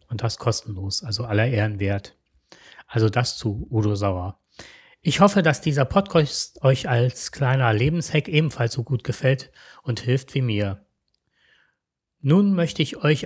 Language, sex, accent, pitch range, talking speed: German, male, German, 110-145 Hz, 150 wpm